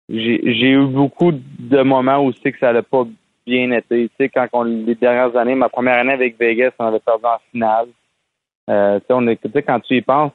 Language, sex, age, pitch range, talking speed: French, male, 30-49, 115-130 Hz, 240 wpm